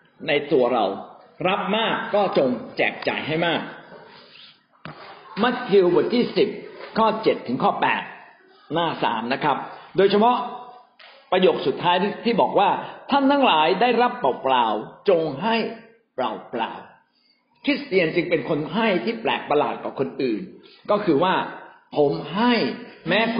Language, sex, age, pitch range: Thai, male, 60-79, 175-240 Hz